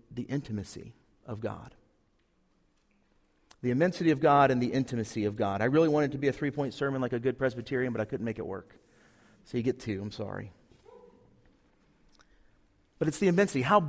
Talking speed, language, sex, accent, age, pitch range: 185 wpm, English, male, American, 40-59, 125-170 Hz